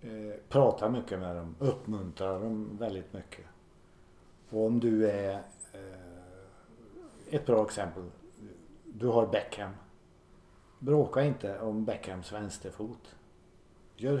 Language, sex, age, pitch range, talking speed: Swedish, male, 60-79, 95-120 Hz, 105 wpm